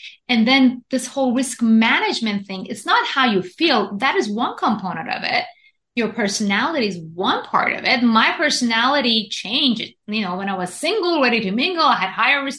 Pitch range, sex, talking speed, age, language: 205-275 Hz, female, 195 wpm, 30-49, English